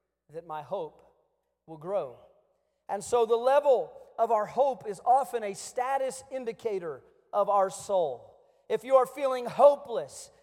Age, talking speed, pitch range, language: 40-59, 145 wpm, 200-300 Hz, English